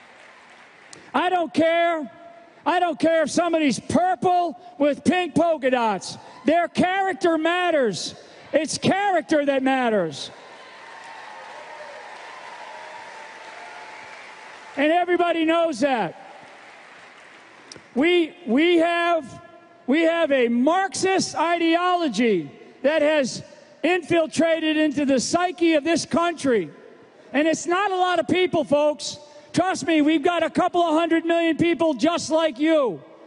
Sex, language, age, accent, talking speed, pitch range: male, English, 40-59, American, 110 wpm, 285-340 Hz